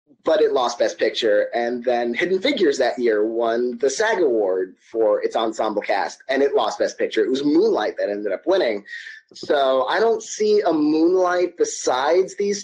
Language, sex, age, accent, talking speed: English, male, 30-49, American, 185 wpm